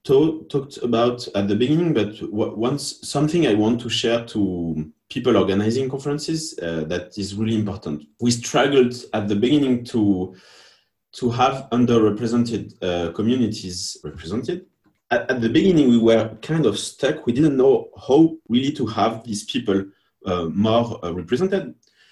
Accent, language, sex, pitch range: French, English, male, 100-125 Hz